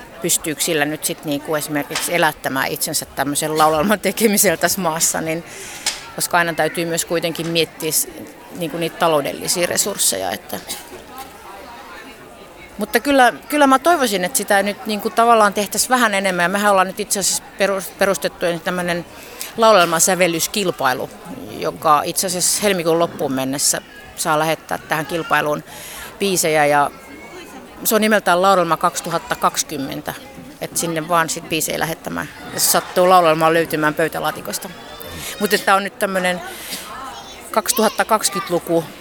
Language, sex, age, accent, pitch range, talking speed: Finnish, female, 30-49, native, 160-200 Hz, 125 wpm